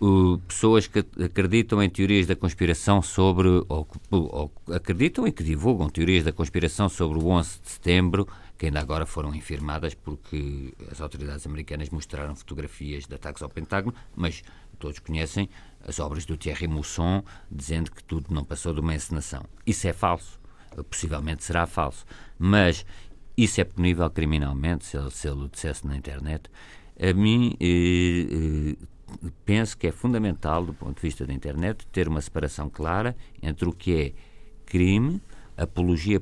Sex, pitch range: male, 75-95 Hz